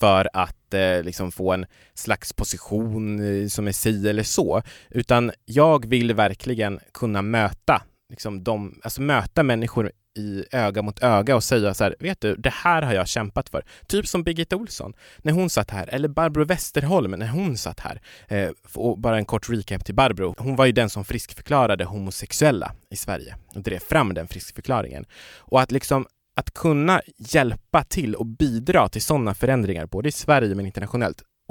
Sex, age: male, 20-39